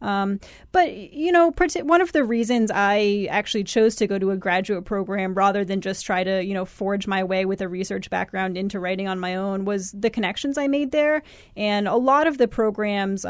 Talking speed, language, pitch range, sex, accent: 215 wpm, English, 190-215 Hz, female, American